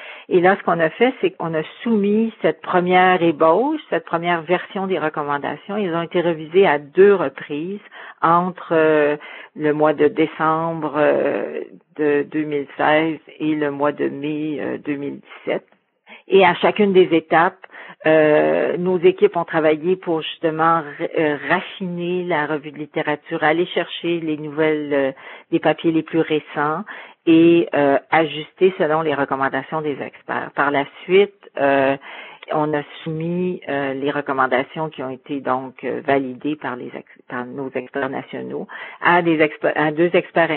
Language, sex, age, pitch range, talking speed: English, female, 50-69, 150-180 Hz, 145 wpm